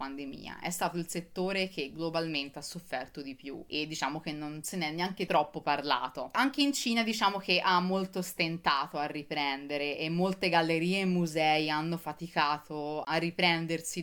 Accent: native